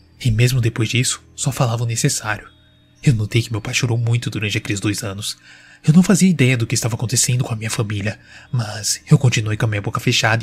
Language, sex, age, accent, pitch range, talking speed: Portuguese, male, 20-39, Brazilian, 110-130 Hz, 225 wpm